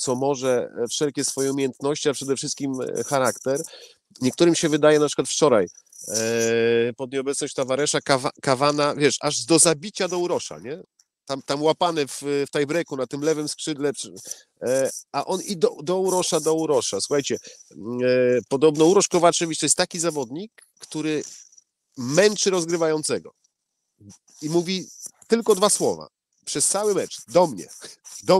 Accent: Polish